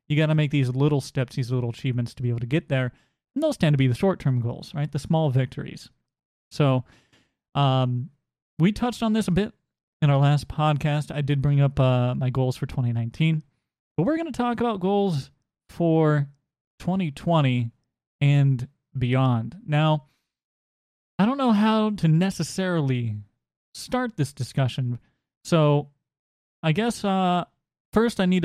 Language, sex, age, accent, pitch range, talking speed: English, male, 30-49, American, 130-170 Hz, 160 wpm